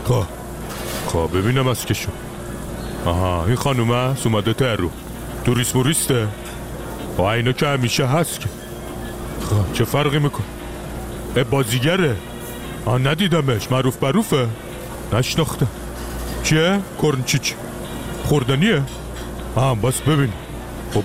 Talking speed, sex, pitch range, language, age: 110 wpm, male, 110-140 Hz, Persian, 60-79